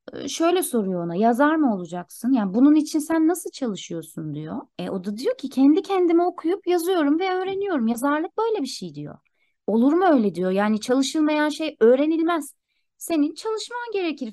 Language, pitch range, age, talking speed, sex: Turkish, 235-320 Hz, 30-49, 170 wpm, female